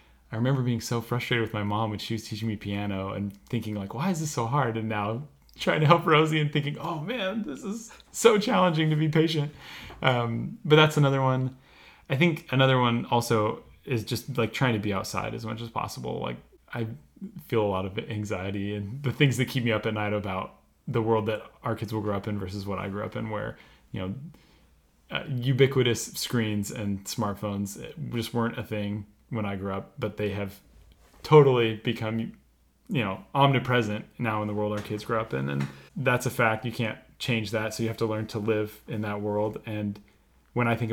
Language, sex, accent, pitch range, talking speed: English, male, American, 105-125 Hz, 215 wpm